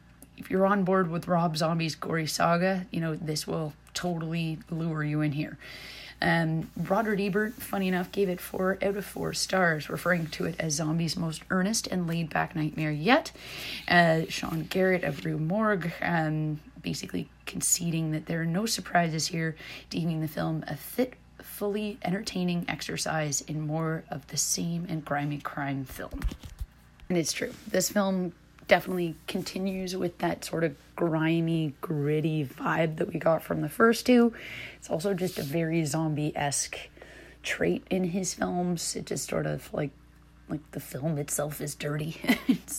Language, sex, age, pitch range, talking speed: English, female, 30-49, 155-185 Hz, 165 wpm